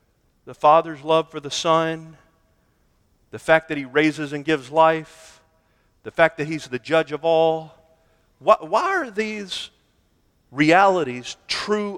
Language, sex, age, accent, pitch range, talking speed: English, male, 40-59, American, 130-185 Hz, 140 wpm